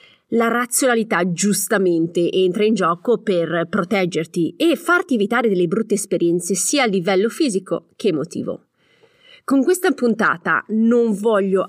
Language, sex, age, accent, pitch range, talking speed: Italian, female, 30-49, native, 175-225 Hz, 130 wpm